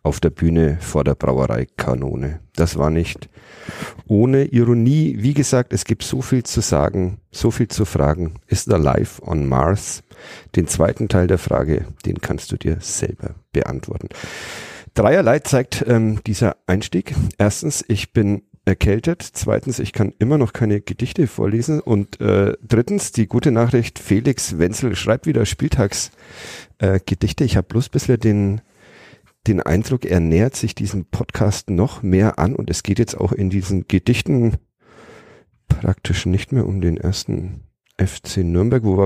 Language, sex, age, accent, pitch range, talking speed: German, male, 50-69, German, 95-120 Hz, 150 wpm